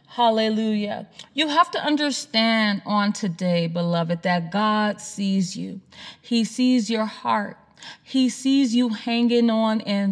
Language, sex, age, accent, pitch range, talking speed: English, female, 30-49, American, 195-265 Hz, 130 wpm